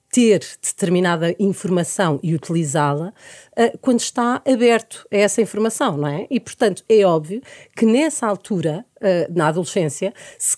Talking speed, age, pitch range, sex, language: 140 wpm, 40-59, 165-225 Hz, female, Portuguese